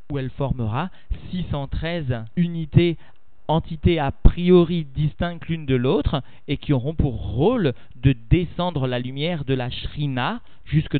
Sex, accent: male, French